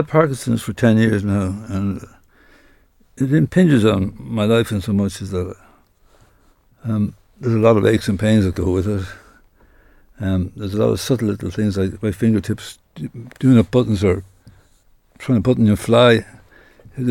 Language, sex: English, male